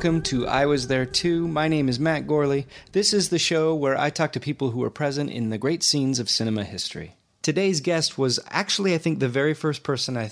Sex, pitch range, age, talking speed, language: male, 105-145 Hz, 30-49, 240 wpm, English